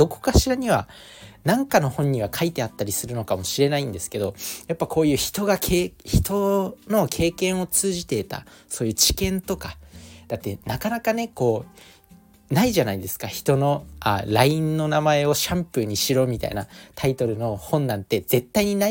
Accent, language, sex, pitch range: native, Japanese, male, 100-145 Hz